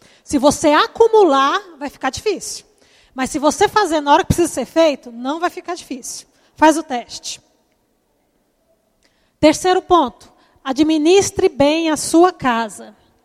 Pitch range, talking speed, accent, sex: 275-340 Hz, 135 wpm, Brazilian, female